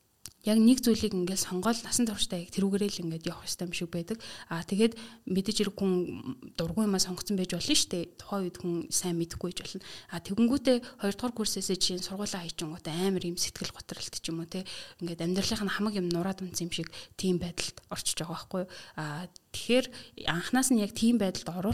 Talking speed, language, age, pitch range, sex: 115 wpm, English, 20-39, 170-210 Hz, female